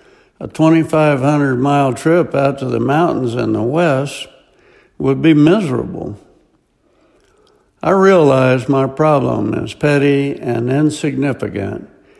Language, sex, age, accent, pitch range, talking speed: English, male, 60-79, American, 135-175 Hz, 105 wpm